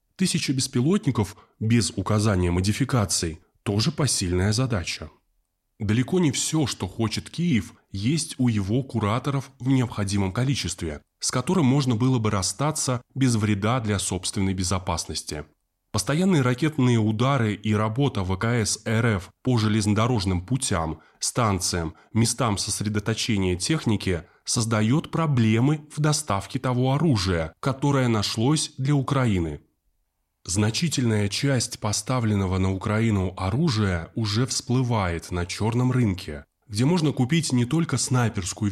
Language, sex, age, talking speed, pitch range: Russian, male, 20-39, 115 wpm, 100-135 Hz